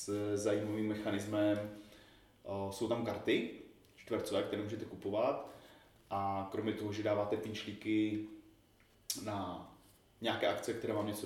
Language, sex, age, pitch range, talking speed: Czech, male, 20-39, 105-110 Hz, 115 wpm